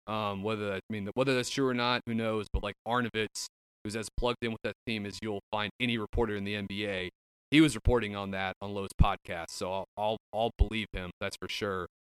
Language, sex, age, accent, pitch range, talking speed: English, male, 30-49, American, 95-115 Hz, 230 wpm